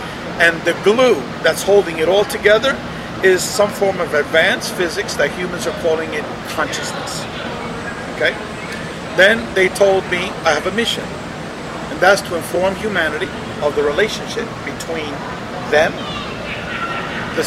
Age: 50-69